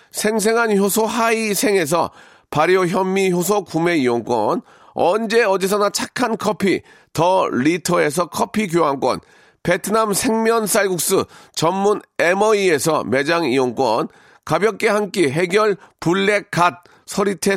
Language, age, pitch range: Korean, 40-59, 175-220 Hz